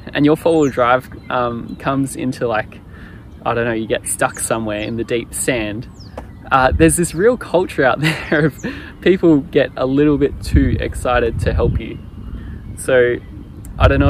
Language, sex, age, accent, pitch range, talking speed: English, male, 20-39, Australian, 105-145 Hz, 175 wpm